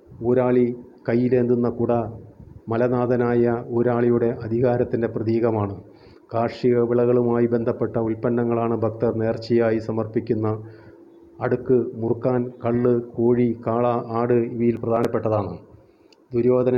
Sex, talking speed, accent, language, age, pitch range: male, 105 wpm, Indian, English, 30-49, 115-125 Hz